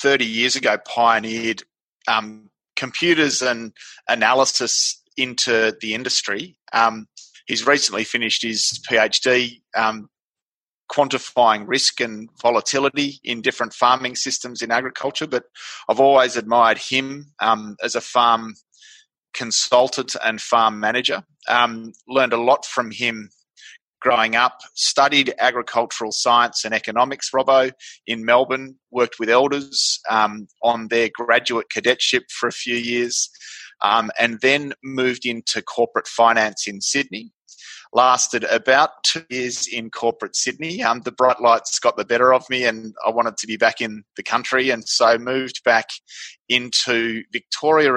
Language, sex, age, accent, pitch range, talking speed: English, male, 30-49, Australian, 115-130 Hz, 135 wpm